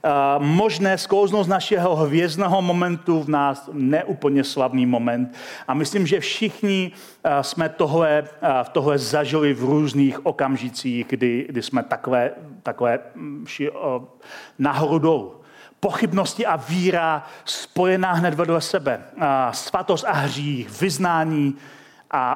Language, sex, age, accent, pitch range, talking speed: Czech, male, 40-59, native, 150-205 Hz, 120 wpm